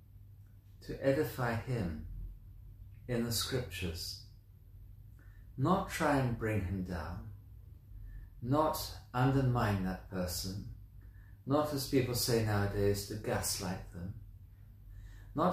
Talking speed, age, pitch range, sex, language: 95 wpm, 50-69, 100-125 Hz, male, English